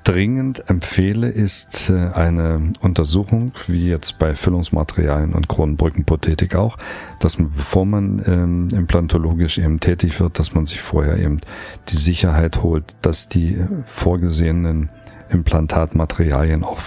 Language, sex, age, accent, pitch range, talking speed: German, male, 40-59, German, 80-100 Hz, 120 wpm